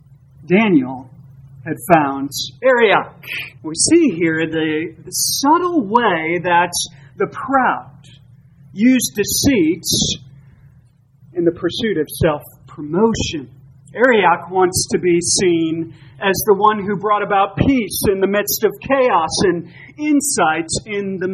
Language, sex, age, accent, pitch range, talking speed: English, male, 40-59, American, 145-220 Hz, 120 wpm